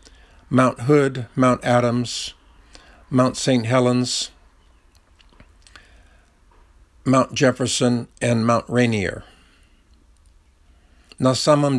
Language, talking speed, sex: Russian, 65 wpm, male